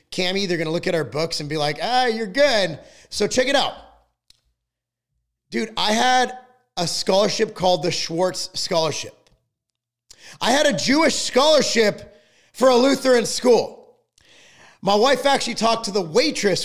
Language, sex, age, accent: English, male, 30-49, American